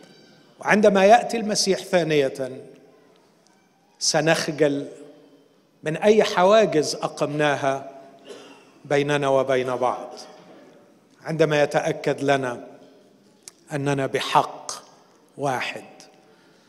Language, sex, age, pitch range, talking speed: Arabic, male, 50-69, 140-165 Hz, 65 wpm